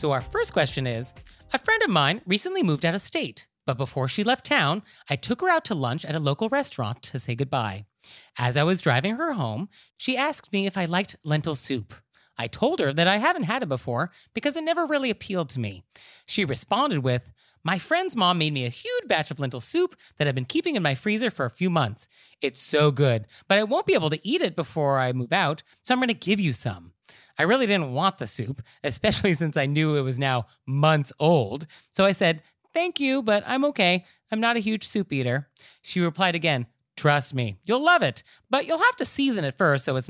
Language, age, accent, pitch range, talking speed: English, 30-49, American, 135-210 Hz, 230 wpm